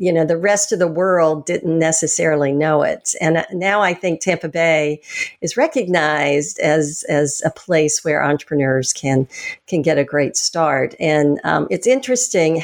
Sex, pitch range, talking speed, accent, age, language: female, 155-195 Hz, 165 wpm, American, 50-69, English